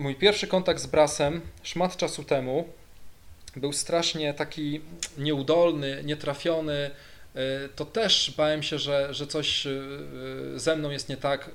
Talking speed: 130 wpm